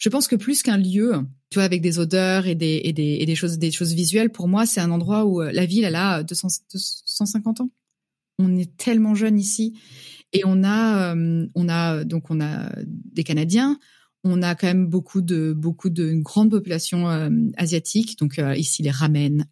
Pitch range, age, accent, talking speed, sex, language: 170-225 Hz, 30-49, French, 205 wpm, female, French